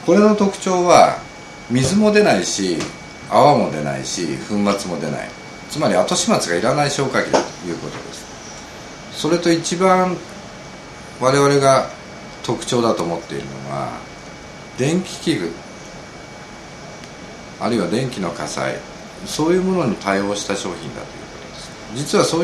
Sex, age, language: male, 50-69, Japanese